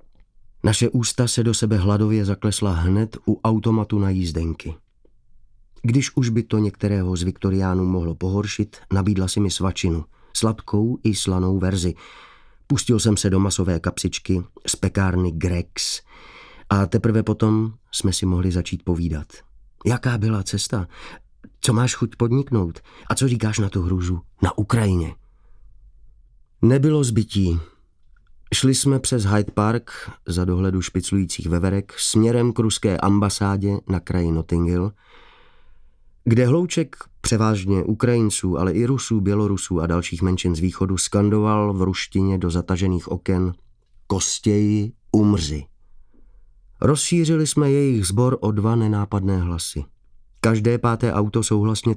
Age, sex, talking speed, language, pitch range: 30-49, male, 130 wpm, Czech, 95-115 Hz